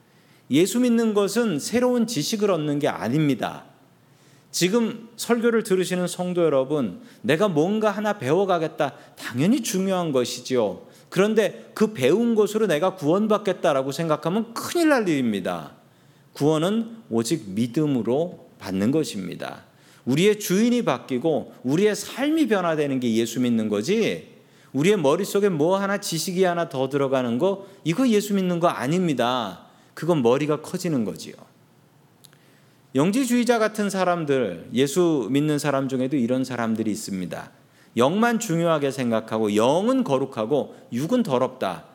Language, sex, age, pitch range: Korean, male, 40-59, 145-220 Hz